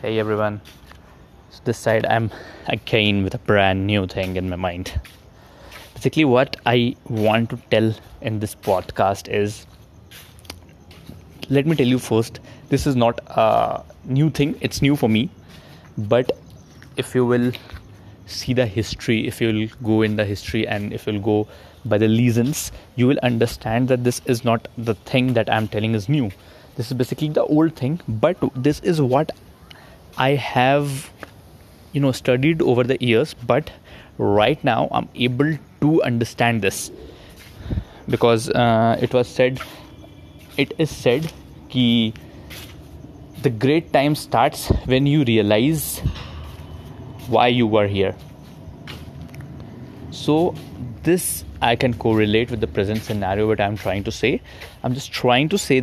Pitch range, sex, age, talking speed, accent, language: 105-130 Hz, male, 20-39, 155 wpm, native, Hindi